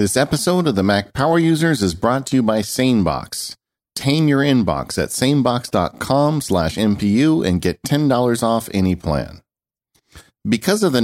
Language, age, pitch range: English, 50-69, 85-130 Hz